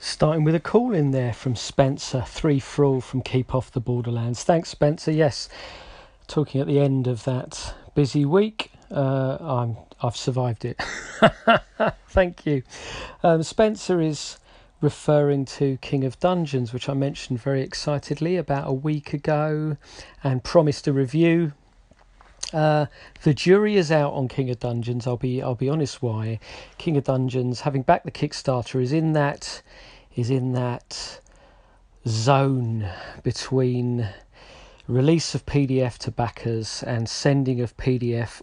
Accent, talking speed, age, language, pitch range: British, 145 wpm, 40-59, English, 125-150 Hz